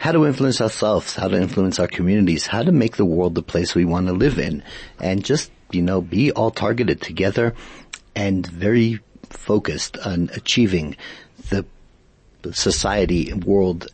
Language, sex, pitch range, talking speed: English, male, 90-115 Hz, 160 wpm